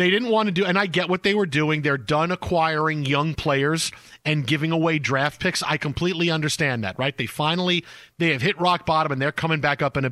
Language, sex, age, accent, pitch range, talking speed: English, male, 40-59, American, 145-175 Hz, 245 wpm